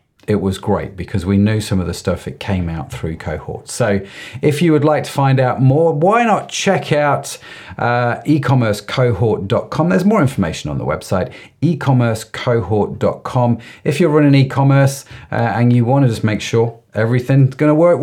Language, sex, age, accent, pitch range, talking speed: English, male, 40-59, British, 110-150 Hz, 175 wpm